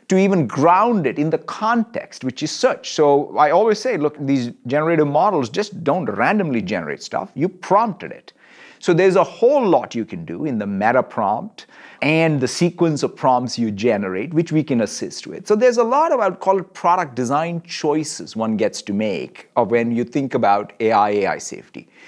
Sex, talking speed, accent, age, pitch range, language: male, 200 wpm, Indian, 50-69, 140-210 Hz, English